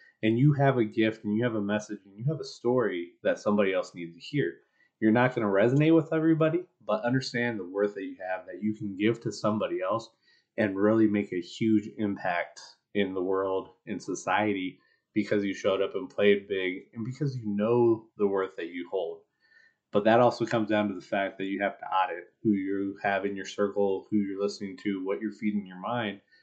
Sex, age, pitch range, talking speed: male, 20-39, 100-120 Hz, 220 wpm